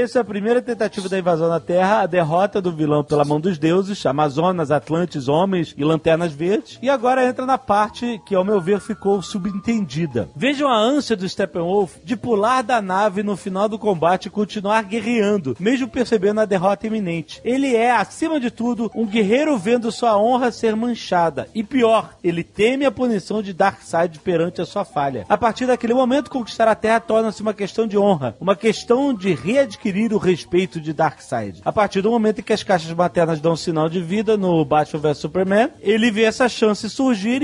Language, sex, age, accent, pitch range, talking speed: Portuguese, male, 40-59, Brazilian, 170-235 Hz, 195 wpm